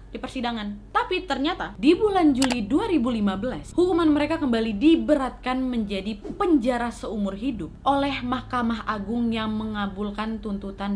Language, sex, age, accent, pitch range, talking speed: Indonesian, female, 20-39, native, 195-255 Hz, 120 wpm